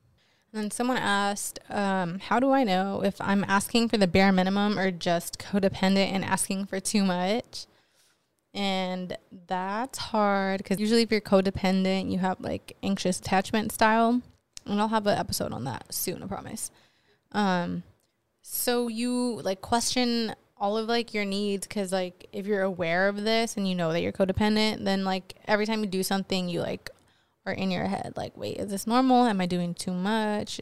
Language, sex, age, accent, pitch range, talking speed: English, female, 20-39, American, 185-210 Hz, 180 wpm